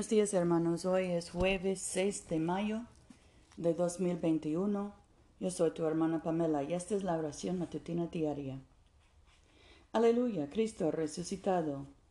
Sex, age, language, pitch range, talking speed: female, 50-69, Spanish, 135-185 Hz, 130 wpm